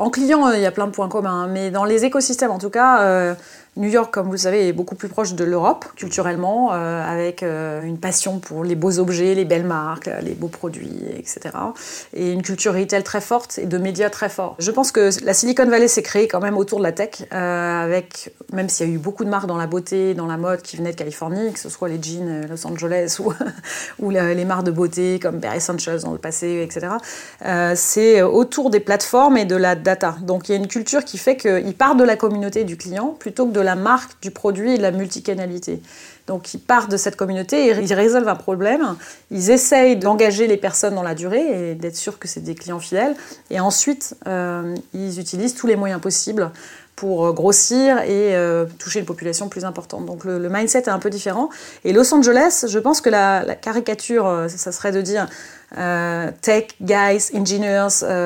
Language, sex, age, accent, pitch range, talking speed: English, female, 30-49, French, 180-220 Hz, 225 wpm